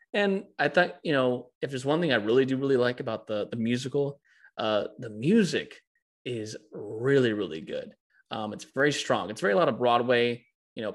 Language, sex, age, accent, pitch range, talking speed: English, male, 20-39, American, 110-125 Hz, 205 wpm